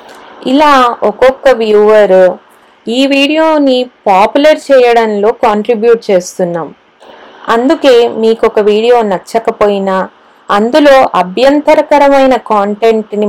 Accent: native